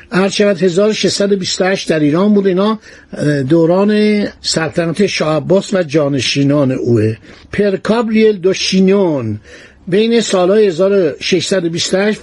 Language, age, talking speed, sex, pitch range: Persian, 60-79, 85 wpm, male, 165-210 Hz